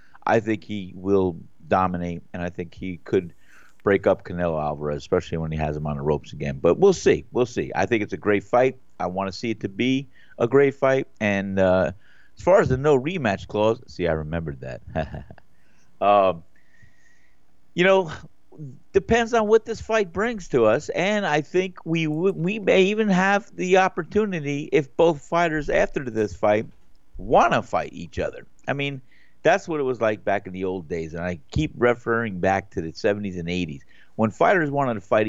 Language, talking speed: English, 195 wpm